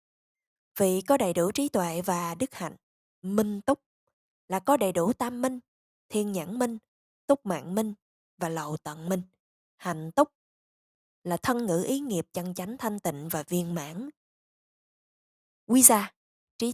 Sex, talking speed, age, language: female, 160 wpm, 20-39, Vietnamese